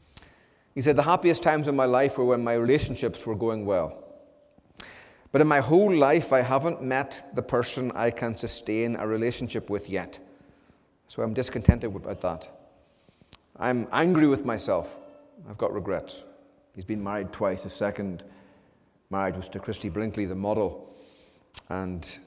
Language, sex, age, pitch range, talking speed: English, male, 30-49, 100-130 Hz, 155 wpm